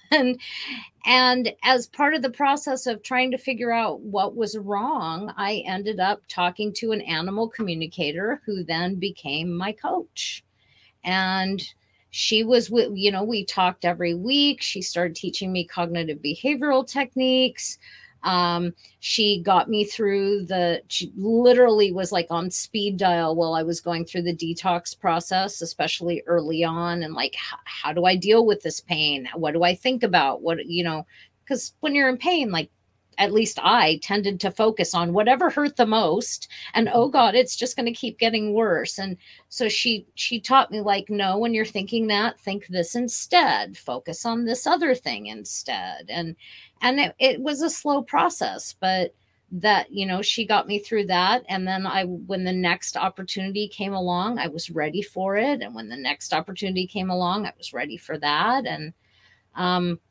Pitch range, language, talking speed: 175-235 Hz, English, 180 wpm